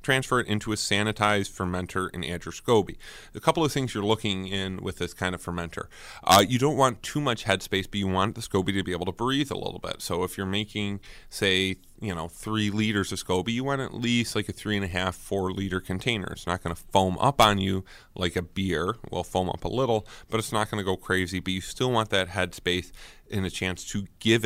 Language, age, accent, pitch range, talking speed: English, 30-49, American, 90-110 Hz, 250 wpm